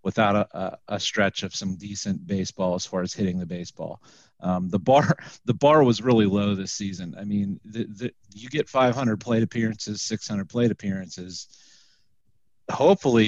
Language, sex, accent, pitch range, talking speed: English, male, American, 105-145 Hz, 165 wpm